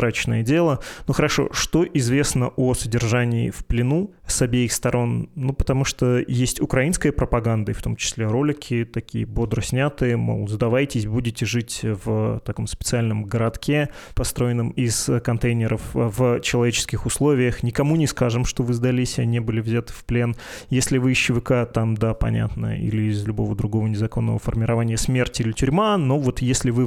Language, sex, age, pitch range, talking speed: Russian, male, 20-39, 115-130 Hz, 160 wpm